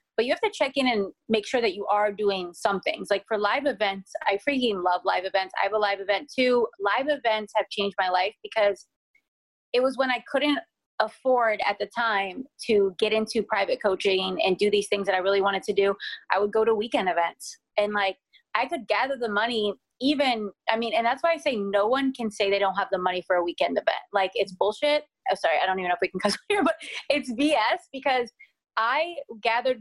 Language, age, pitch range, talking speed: English, 20-39, 195-250 Hz, 230 wpm